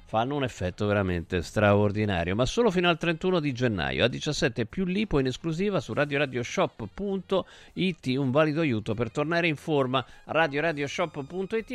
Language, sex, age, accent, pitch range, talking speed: Italian, male, 50-69, native, 120-175 Hz, 160 wpm